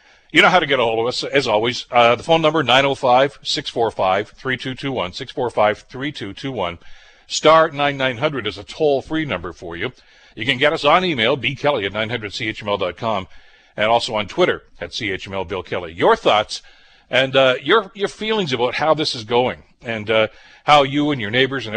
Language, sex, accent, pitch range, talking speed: English, male, American, 110-150 Hz, 165 wpm